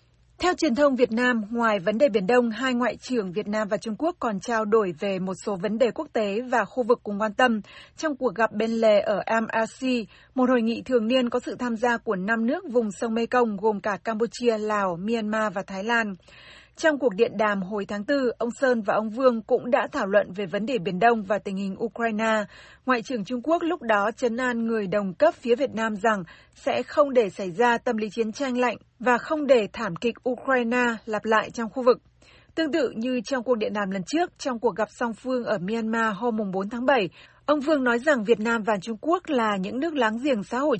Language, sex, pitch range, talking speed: Vietnamese, female, 215-255 Hz, 235 wpm